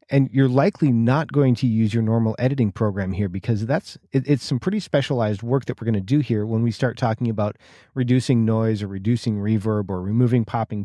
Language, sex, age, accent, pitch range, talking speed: English, male, 40-59, American, 110-135 Hz, 210 wpm